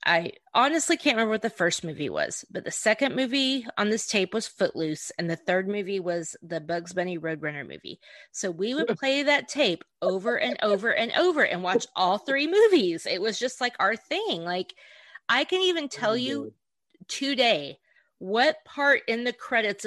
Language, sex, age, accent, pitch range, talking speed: English, female, 30-49, American, 170-235 Hz, 185 wpm